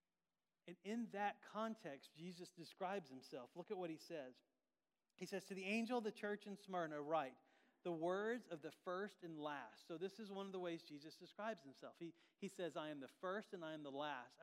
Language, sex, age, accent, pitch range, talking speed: English, male, 40-59, American, 160-210 Hz, 215 wpm